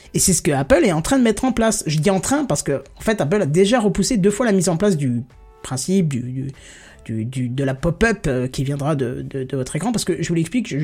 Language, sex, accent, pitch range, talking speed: French, male, French, 140-205 Hz, 275 wpm